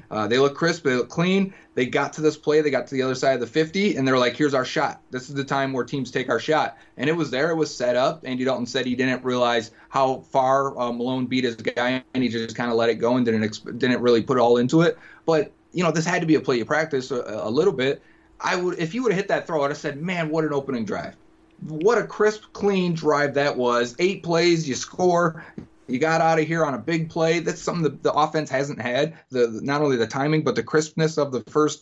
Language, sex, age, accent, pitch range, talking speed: English, male, 30-49, American, 125-160 Hz, 270 wpm